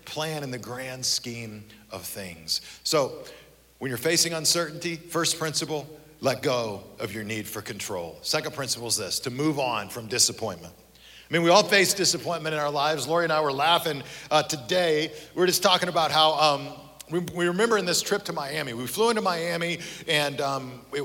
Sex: male